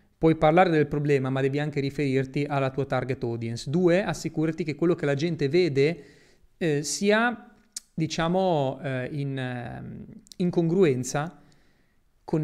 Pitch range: 140-190 Hz